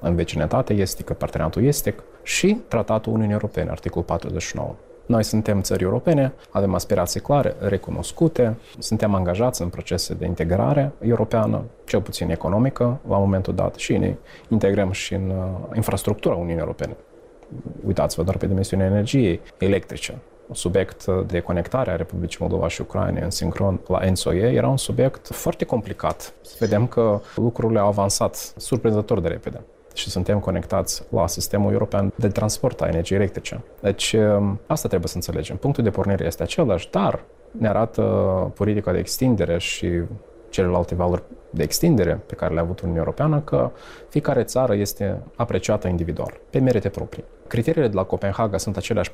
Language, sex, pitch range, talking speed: Romanian, male, 90-115 Hz, 155 wpm